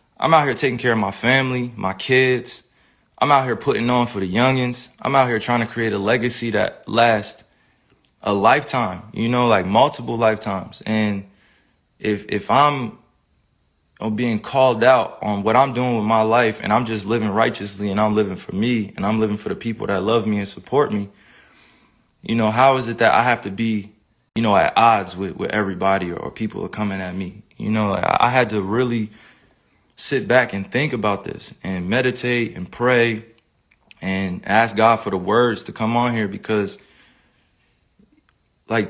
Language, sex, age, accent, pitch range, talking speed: English, male, 20-39, American, 105-125 Hz, 190 wpm